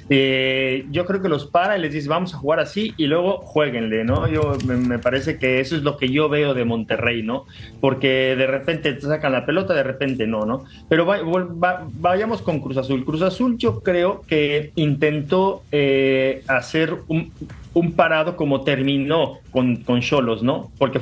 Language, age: Spanish, 40-59